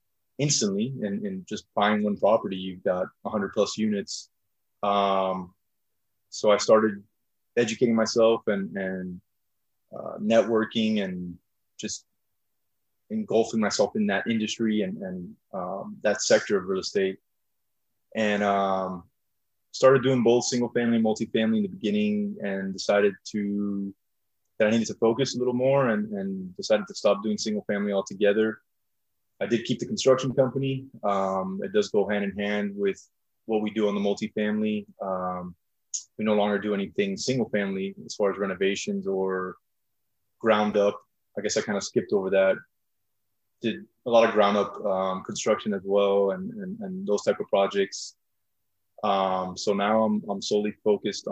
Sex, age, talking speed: male, 20-39, 160 wpm